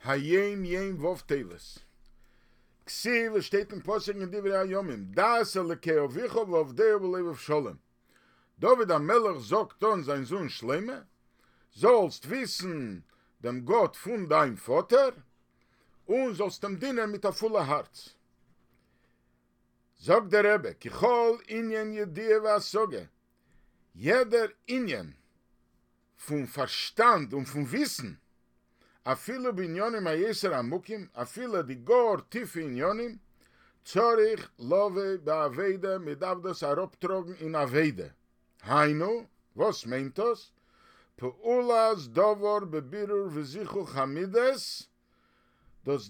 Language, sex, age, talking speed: English, male, 50-69, 110 wpm